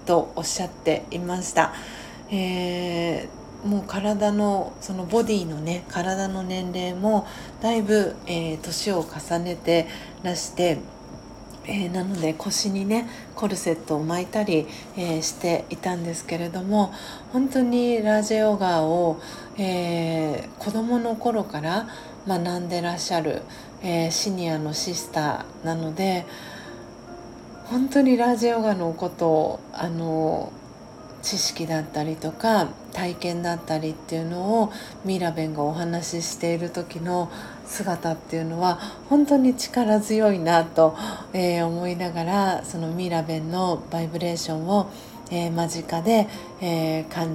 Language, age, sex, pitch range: Japanese, 40-59, female, 165-200 Hz